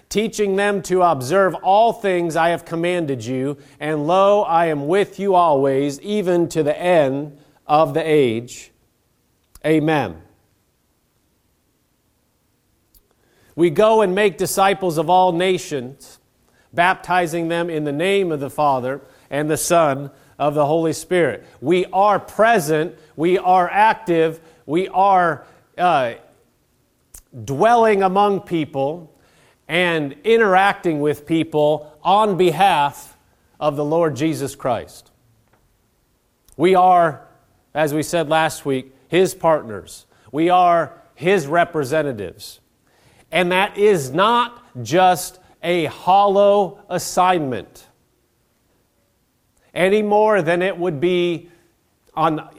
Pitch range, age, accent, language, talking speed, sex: 150-185 Hz, 40-59, American, English, 115 wpm, male